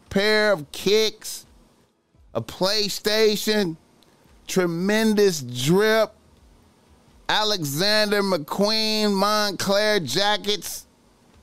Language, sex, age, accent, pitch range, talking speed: English, male, 30-49, American, 140-190 Hz, 60 wpm